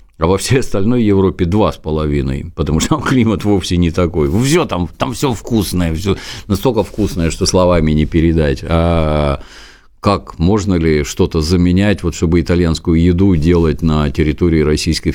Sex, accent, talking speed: male, native, 160 wpm